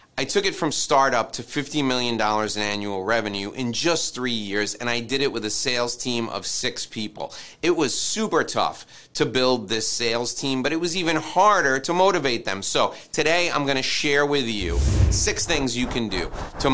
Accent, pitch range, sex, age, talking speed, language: American, 115-145 Hz, male, 30-49, 200 wpm, English